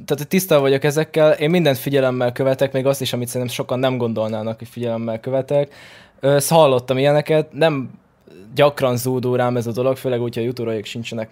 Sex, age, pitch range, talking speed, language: male, 20-39, 115-140 Hz, 175 wpm, Hungarian